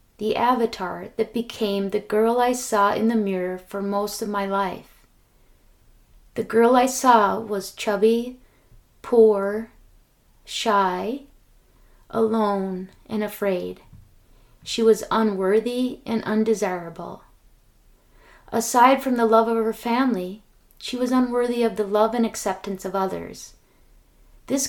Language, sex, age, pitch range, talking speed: English, female, 30-49, 200-235 Hz, 120 wpm